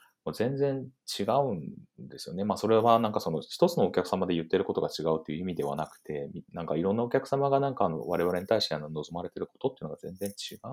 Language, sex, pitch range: Japanese, male, 80-135 Hz